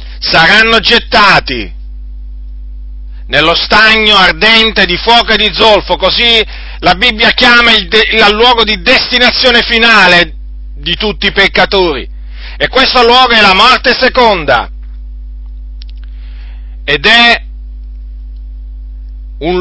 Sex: male